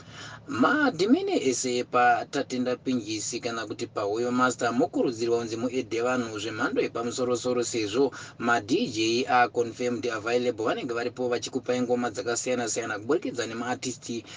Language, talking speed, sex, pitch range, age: English, 160 wpm, male, 115-125 Hz, 30-49